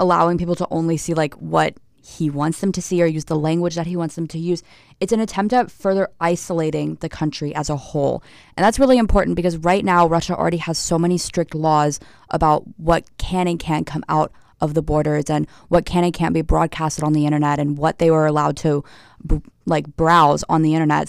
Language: English